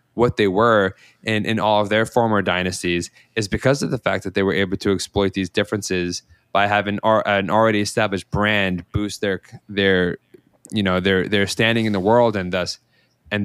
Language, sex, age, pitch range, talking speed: English, male, 20-39, 100-120 Hz, 190 wpm